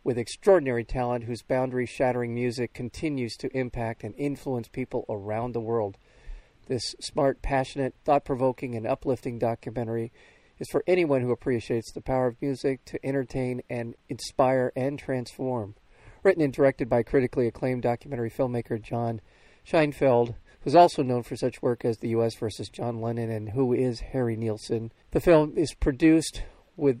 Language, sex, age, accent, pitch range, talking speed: English, male, 40-59, American, 115-135 Hz, 155 wpm